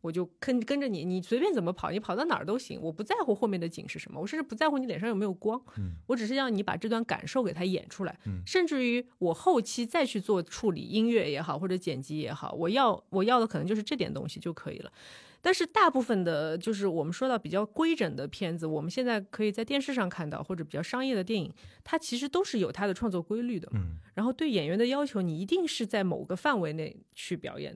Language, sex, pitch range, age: Chinese, female, 175-250 Hz, 20-39